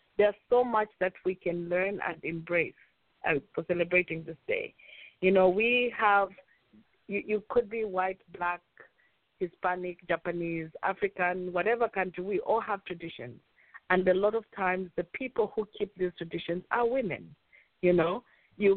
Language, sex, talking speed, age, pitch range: English, female, 155 wpm, 50-69, 170-210 Hz